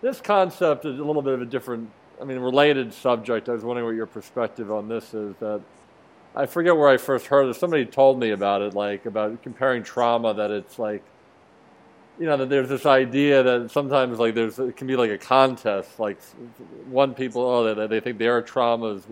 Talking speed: 215 wpm